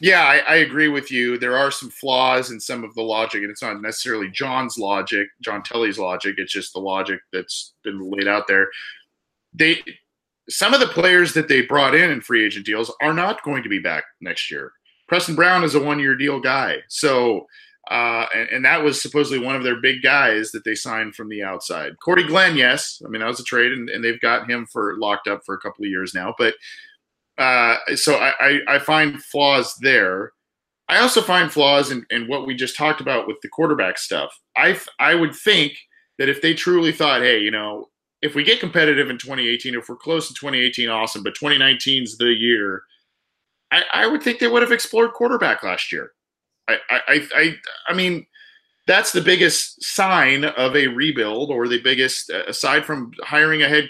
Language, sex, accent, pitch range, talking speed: English, male, American, 120-165 Hz, 205 wpm